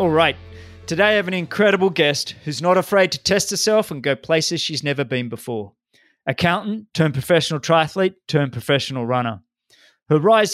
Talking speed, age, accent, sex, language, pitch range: 170 wpm, 30-49, Australian, male, English, 125-170 Hz